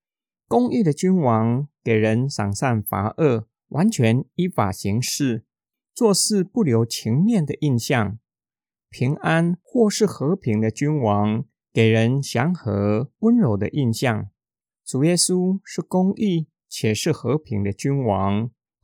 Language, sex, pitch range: Chinese, male, 110-175 Hz